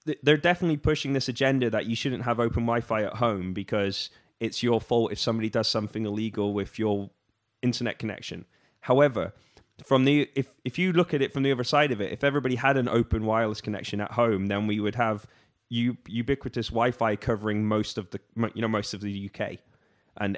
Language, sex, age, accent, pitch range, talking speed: English, male, 20-39, British, 105-120 Hz, 200 wpm